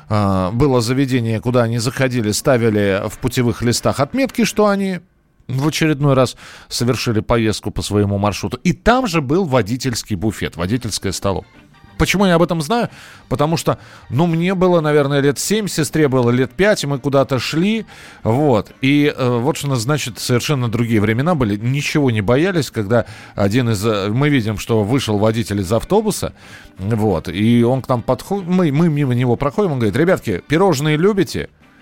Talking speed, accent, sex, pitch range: 165 wpm, native, male, 115-165 Hz